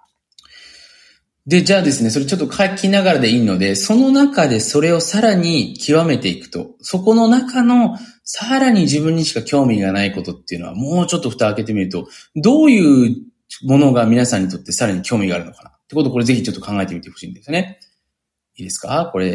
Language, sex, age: Japanese, male, 20-39